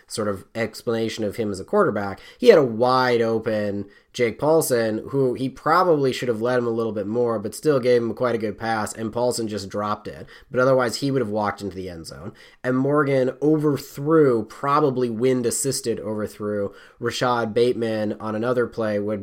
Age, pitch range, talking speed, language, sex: 20-39, 105-125 Hz, 195 wpm, English, male